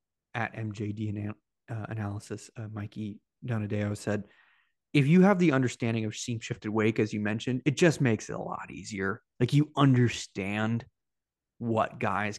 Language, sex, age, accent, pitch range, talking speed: English, male, 20-39, American, 105-125 Hz, 160 wpm